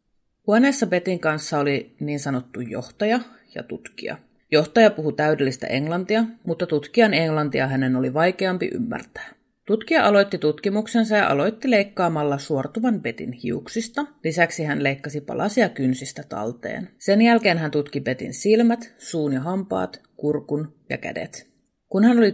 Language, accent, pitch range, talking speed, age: Finnish, native, 140-210 Hz, 135 wpm, 30-49